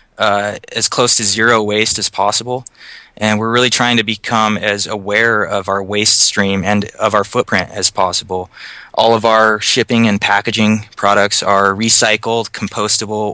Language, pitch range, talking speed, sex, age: English, 100-115 Hz, 160 wpm, male, 20-39